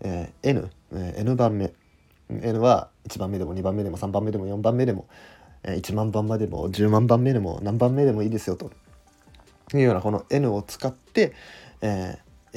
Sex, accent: male, native